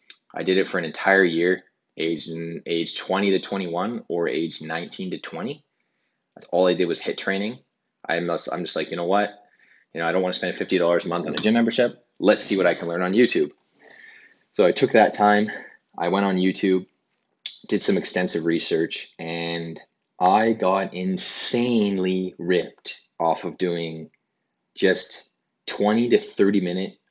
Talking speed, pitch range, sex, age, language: 175 wpm, 85-95 Hz, male, 20-39, English